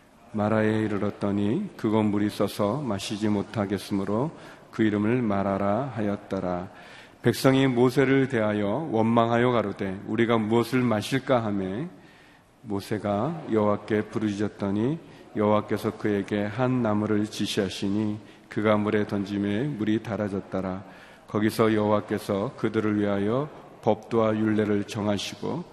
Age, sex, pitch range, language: 40-59, male, 105-120 Hz, Korean